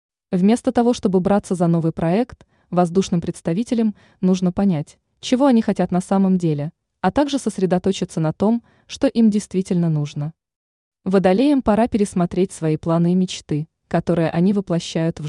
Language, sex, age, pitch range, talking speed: Russian, female, 20-39, 170-215 Hz, 145 wpm